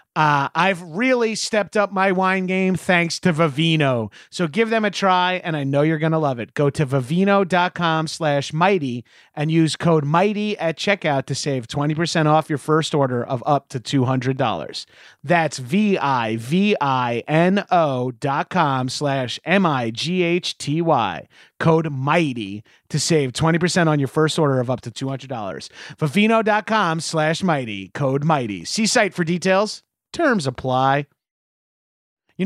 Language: English